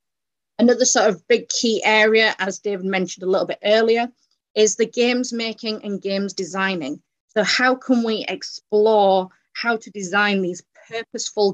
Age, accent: 30-49, British